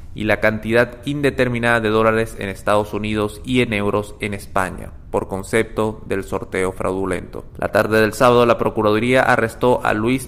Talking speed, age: 165 wpm, 20-39